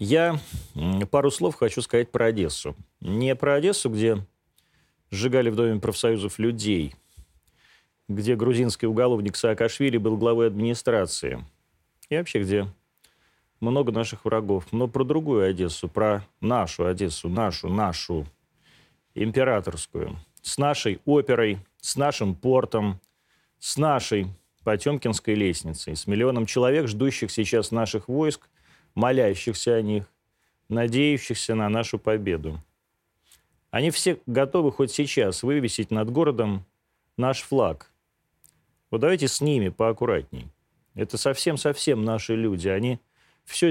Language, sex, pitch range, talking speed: Russian, male, 95-130 Hz, 115 wpm